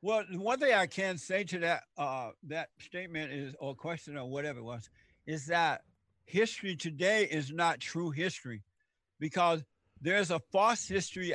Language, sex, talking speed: English, male, 165 wpm